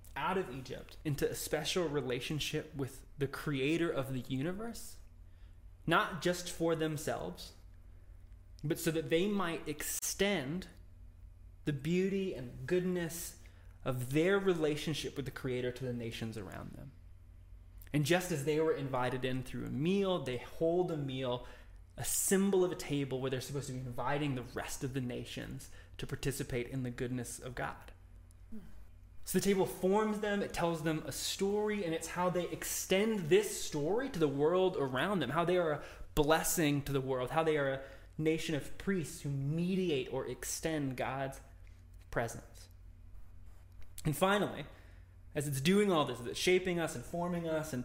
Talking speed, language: 165 wpm, English